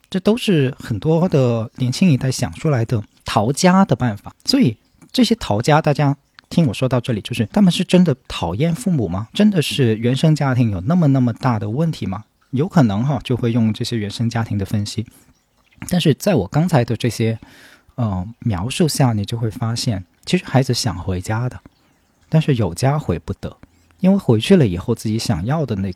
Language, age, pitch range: Chinese, 40-59, 110-145 Hz